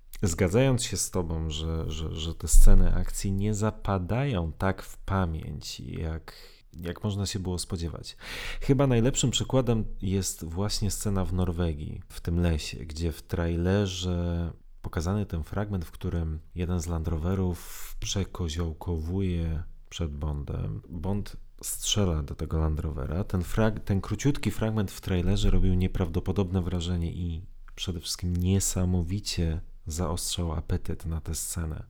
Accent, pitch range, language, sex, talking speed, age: native, 85-105 Hz, Polish, male, 135 wpm, 40-59